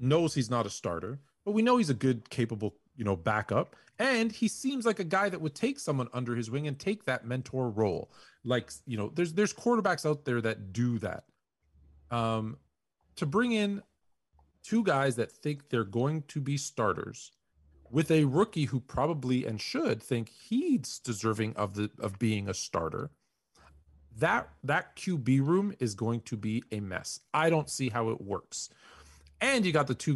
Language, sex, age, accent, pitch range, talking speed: English, male, 40-59, American, 110-165 Hz, 185 wpm